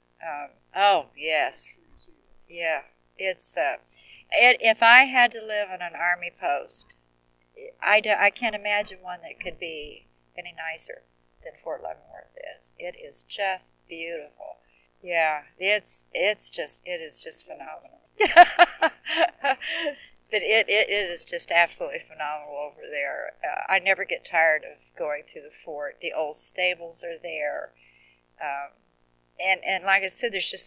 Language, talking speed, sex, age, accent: English, 145 wpm, female, 50-69, American